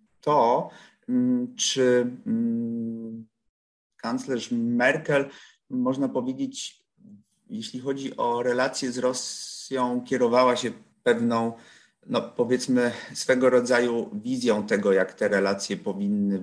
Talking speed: 90 wpm